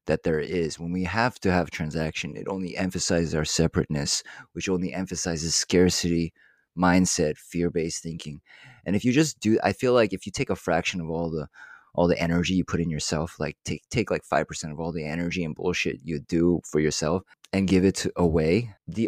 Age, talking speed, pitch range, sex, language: 20-39, 200 wpm, 85-95 Hz, male, English